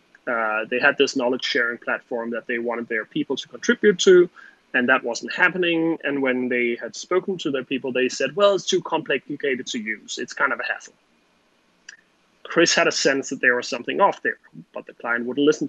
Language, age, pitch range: English, 30-49, 130-170 Hz